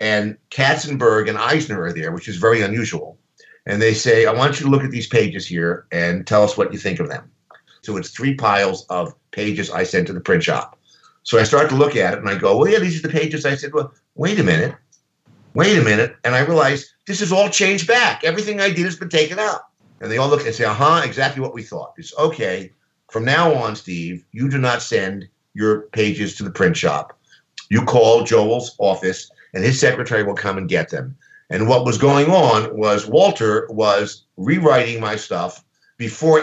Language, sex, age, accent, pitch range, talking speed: English, male, 50-69, American, 110-150 Hz, 220 wpm